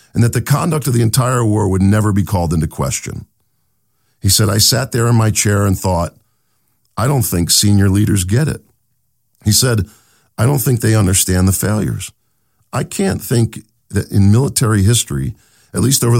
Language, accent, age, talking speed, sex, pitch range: English, American, 50-69, 185 wpm, male, 105-145 Hz